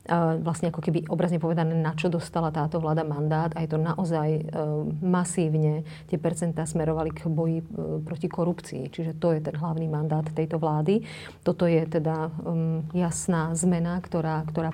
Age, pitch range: 40-59, 160-175 Hz